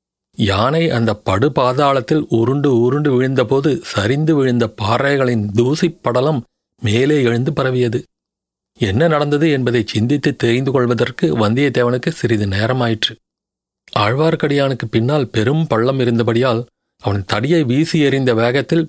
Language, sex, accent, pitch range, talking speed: Tamil, male, native, 115-140 Hz, 105 wpm